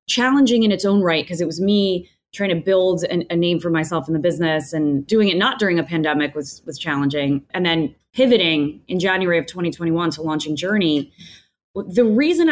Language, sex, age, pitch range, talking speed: English, female, 20-39, 155-195 Hz, 200 wpm